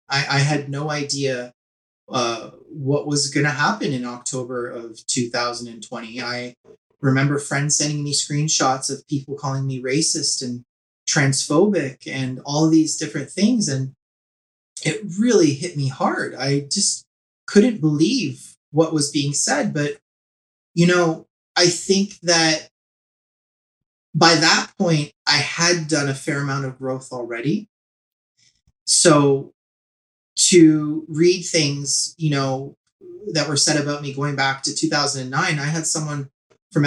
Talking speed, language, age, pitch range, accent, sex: 135 wpm, English, 30-49, 130-165 Hz, American, male